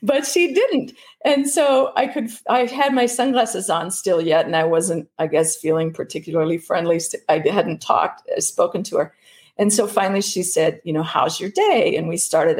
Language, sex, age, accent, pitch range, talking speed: English, female, 50-69, American, 165-245 Hz, 195 wpm